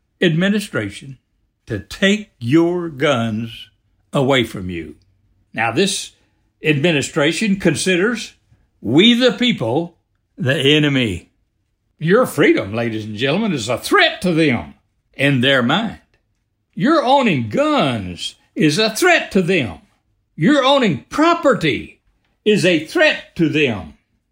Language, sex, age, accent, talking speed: English, male, 60-79, American, 115 wpm